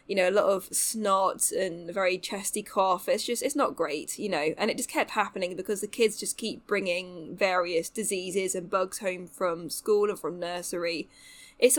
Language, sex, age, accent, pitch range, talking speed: English, female, 10-29, British, 185-220 Hz, 200 wpm